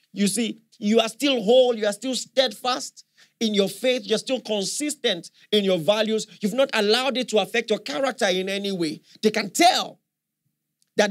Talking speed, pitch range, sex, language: 185 wpm, 185-255 Hz, male, English